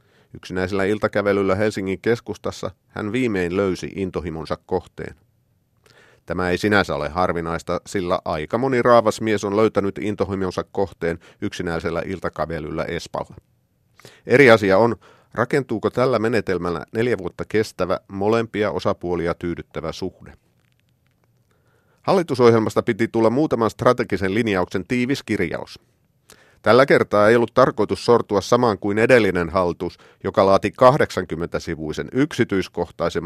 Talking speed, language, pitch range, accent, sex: 110 wpm, Finnish, 95-120 Hz, native, male